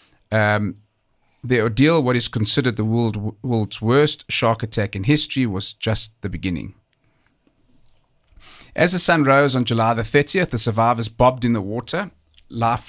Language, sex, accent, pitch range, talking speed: English, male, South African, 105-130 Hz, 150 wpm